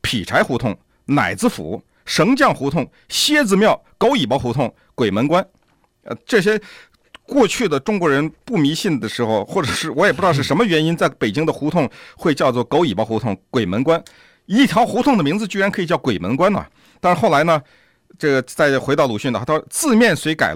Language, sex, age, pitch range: Chinese, male, 50-69, 125-210 Hz